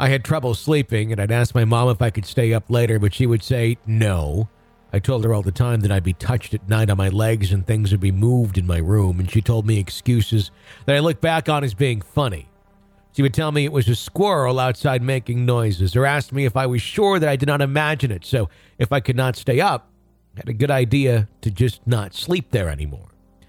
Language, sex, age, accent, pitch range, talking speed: English, male, 50-69, American, 105-135 Hz, 250 wpm